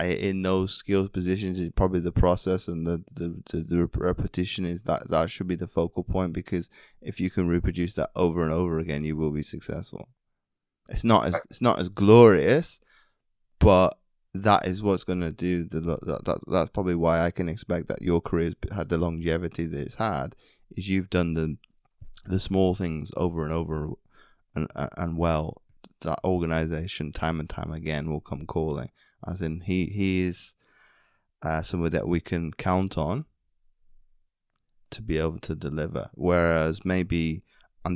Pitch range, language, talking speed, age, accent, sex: 80-90 Hz, English, 175 wpm, 20-39, British, male